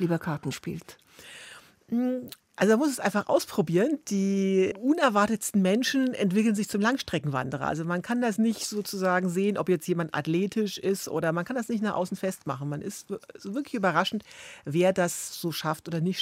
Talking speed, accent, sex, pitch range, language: 170 wpm, German, female, 165-210 Hz, German